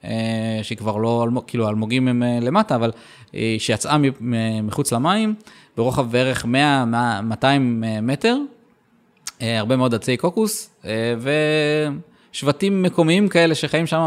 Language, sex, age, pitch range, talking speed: Hebrew, male, 20-39, 110-145 Hz, 100 wpm